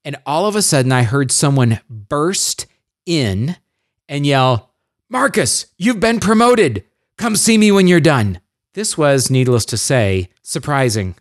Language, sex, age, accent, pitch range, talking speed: English, male, 40-59, American, 120-165 Hz, 150 wpm